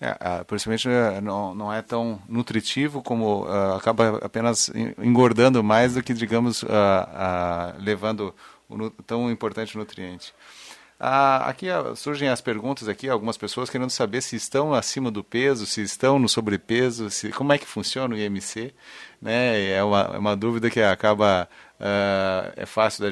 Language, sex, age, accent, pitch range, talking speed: Portuguese, male, 40-59, Brazilian, 105-125 Hz, 160 wpm